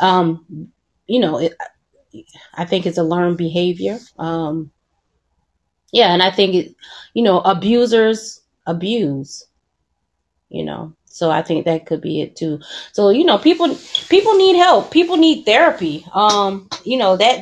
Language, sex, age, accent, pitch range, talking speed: English, female, 30-49, American, 165-205 Hz, 150 wpm